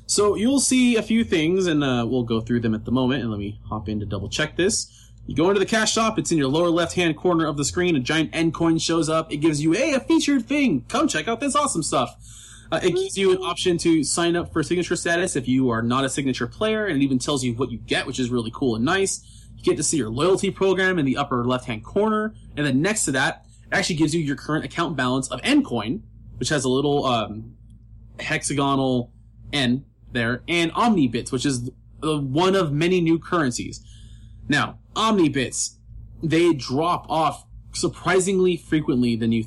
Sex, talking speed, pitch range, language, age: male, 220 wpm, 120-180 Hz, English, 20-39